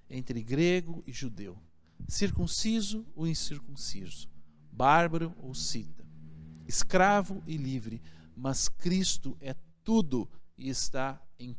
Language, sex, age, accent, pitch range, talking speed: Portuguese, male, 50-69, Brazilian, 110-165 Hz, 105 wpm